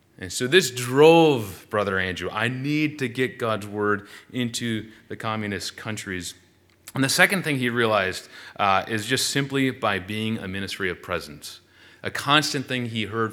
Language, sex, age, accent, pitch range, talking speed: English, male, 30-49, American, 95-125 Hz, 165 wpm